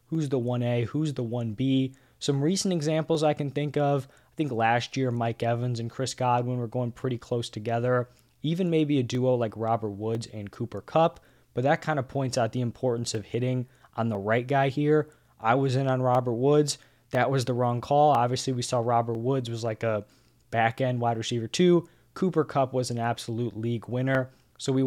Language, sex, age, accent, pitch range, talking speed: English, male, 20-39, American, 115-135 Hz, 205 wpm